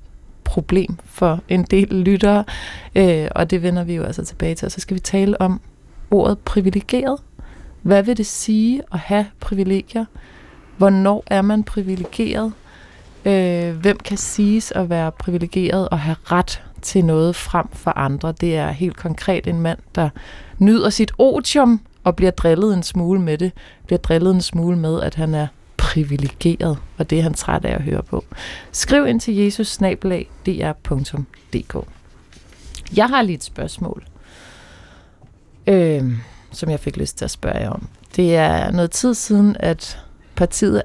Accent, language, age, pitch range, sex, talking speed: native, Danish, 30-49, 160-205 Hz, female, 160 wpm